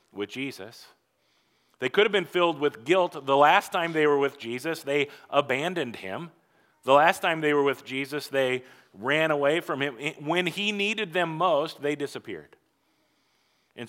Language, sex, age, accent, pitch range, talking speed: English, male, 40-59, American, 135-175 Hz, 170 wpm